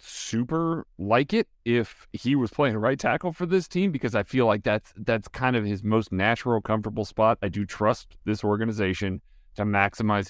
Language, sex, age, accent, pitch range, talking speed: English, male, 40-59, American, 100-135 Hz, 190 wpm